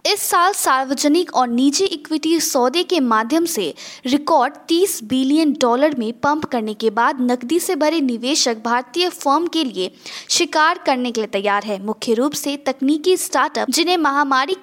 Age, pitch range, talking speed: 20-39, 245-335 Hz, 165 wpm